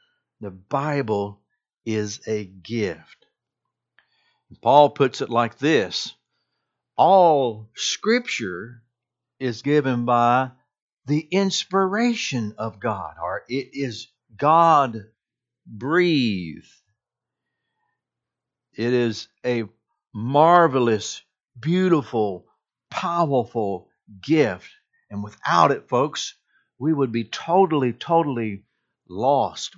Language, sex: English, male